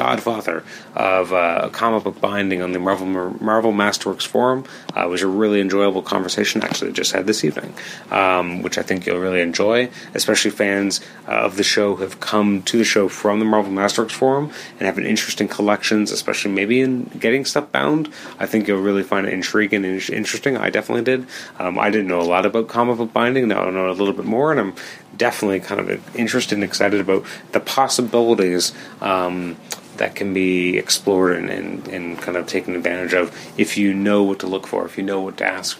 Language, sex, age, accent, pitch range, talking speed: English, male, 30-49, American, 95-110 Hz, 210 wpm